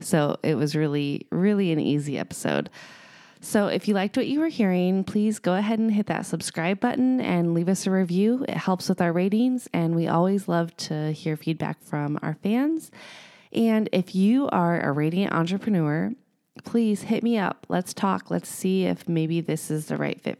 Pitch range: 165-210 Hz